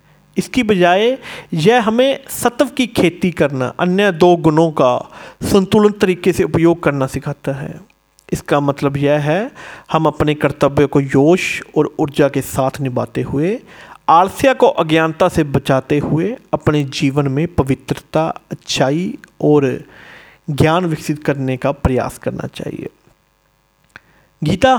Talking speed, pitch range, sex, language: 130 wpm, 145-185 Hz, male, Hindi